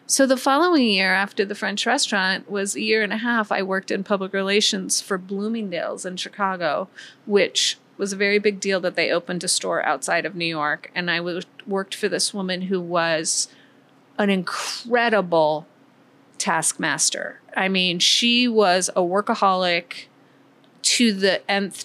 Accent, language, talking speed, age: American, English, 160 wpm, 30-49